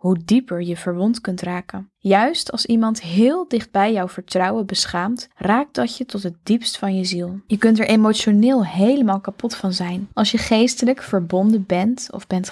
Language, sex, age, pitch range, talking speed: Dutch, female, 10-29, 185-235 Hz, 180 wpm